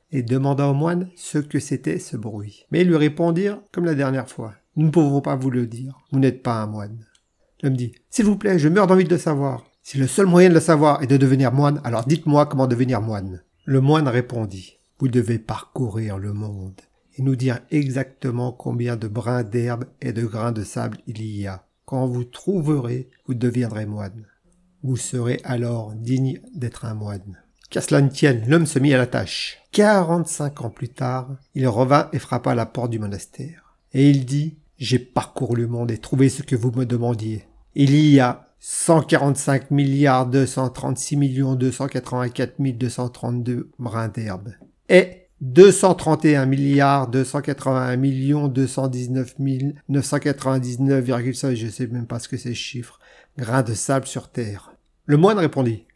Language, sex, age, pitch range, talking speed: French, male, 50-69, 120-145 Hz, 180 wpm